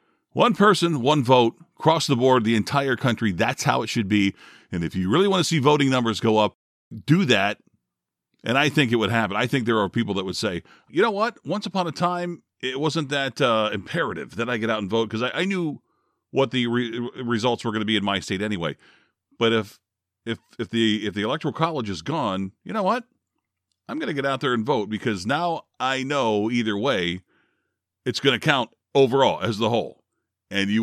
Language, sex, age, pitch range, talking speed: English, male, 40-59, 100-135 Hz, 220 wpm